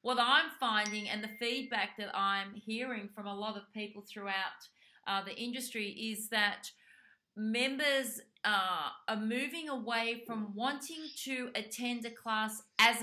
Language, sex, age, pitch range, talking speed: English, female, 30-49, 205-235 Hz, 145 wpm